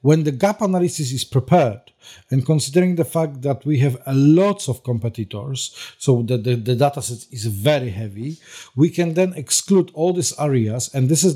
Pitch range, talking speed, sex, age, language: 125-155 Hz, 190 wpm, male, 50-69, English